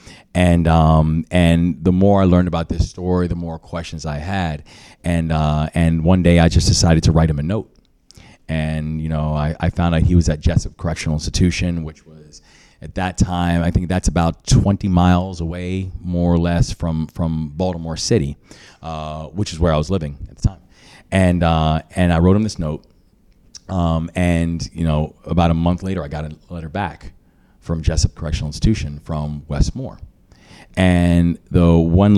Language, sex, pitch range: English, male, 80-90 Hz